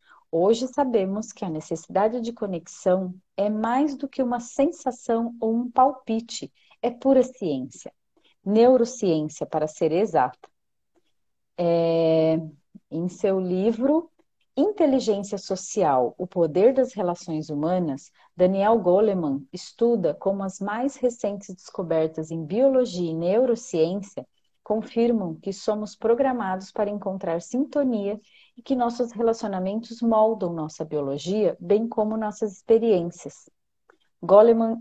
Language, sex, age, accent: Portuguese, female, 40-59, Brazilian